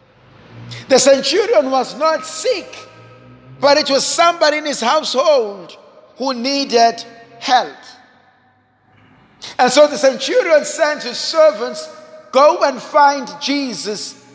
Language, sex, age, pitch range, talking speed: English, male, 50-69, 175-285 Hz, 110 wpm